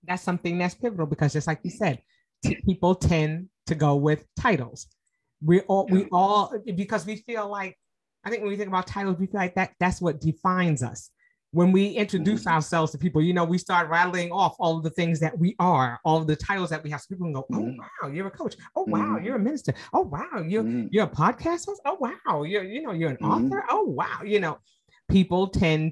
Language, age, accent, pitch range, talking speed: English, 30-49, American, 155-190 Hz, 220 wpm